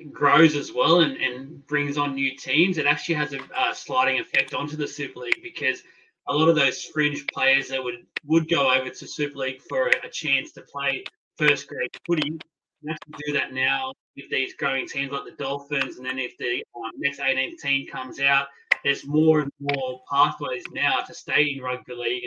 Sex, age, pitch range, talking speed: male, 20-39, 135-170 Hz, 205 wpm